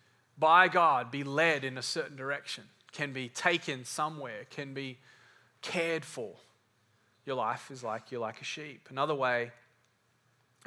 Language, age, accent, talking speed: English, 30-49, Australian, 150 wpm